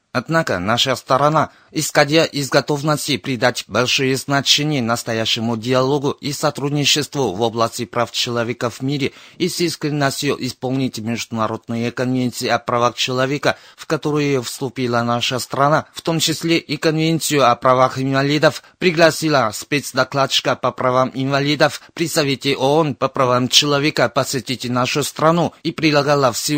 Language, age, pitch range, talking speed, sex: Russian, 30-49, 125-150 Hz, 130 wpm, male